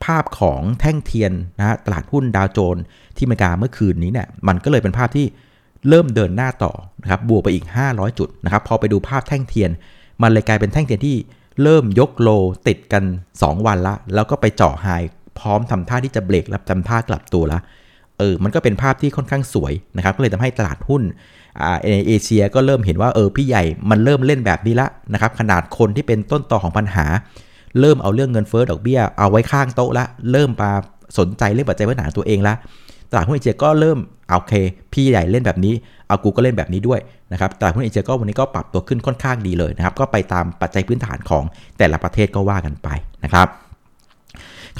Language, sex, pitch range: Thai, male, 95-125 Hz